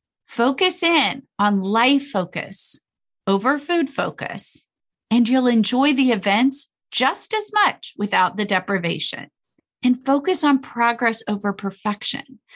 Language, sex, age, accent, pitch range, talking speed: English, female, 30-49, American, 205-275 Hz, 120 wpm